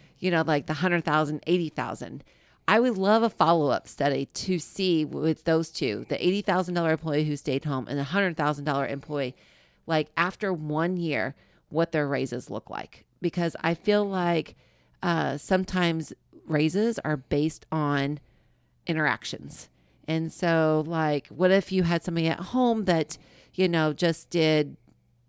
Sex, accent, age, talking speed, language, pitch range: female, American, 40-59, 145 wpm, English, 150-175 Hz